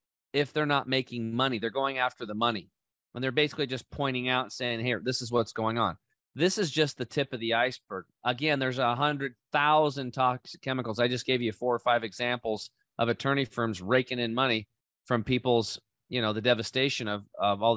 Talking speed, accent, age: 205 wpm, American, 30-49